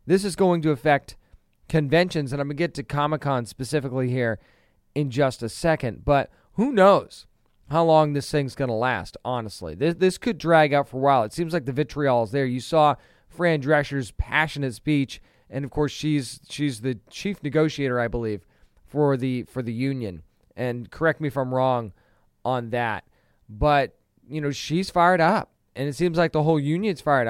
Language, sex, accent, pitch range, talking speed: English, male, American, 130-165 Hz, 190 wpm